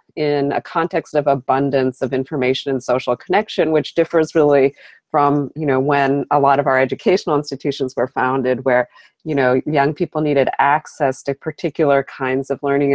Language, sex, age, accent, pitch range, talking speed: English, female, 40-59, American, 135-165 Hz, 170 wpm